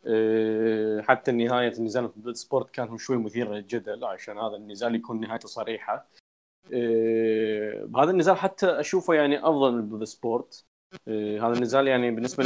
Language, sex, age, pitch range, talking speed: Arabic, male, 20-39, 110-135 Hz, 160 wpm